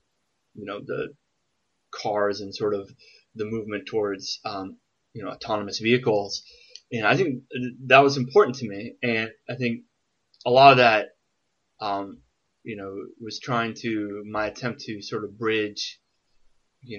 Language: English